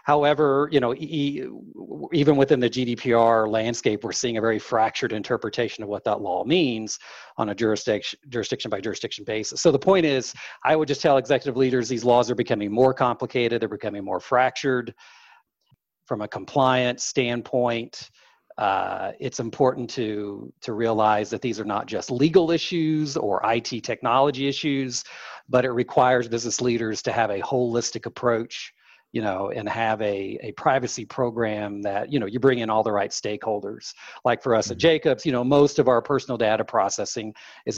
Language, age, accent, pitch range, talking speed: English, 40-59, American, 110-140 Hz, 175 wpm